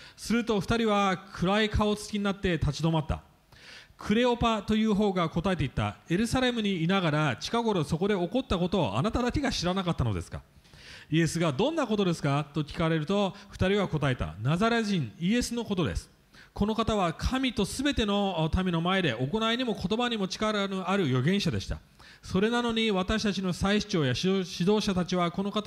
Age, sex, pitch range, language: 40-59, male, 165-210 Hz, English